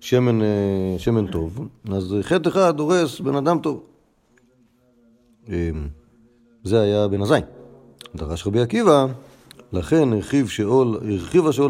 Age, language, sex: 40-59, Hebrew, male